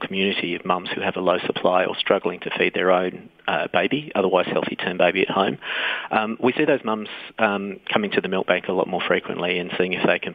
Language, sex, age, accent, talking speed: English, male, 40-59, Australian, 245 wpm